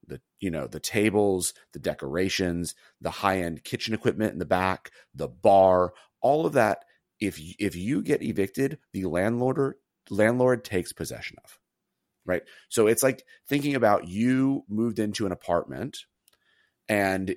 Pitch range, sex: 90-115 Hz, male